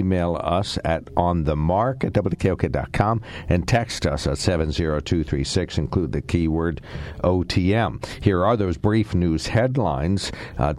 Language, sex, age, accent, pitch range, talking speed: English, male, 60-79, American, 85-110 Hz, 120 wpm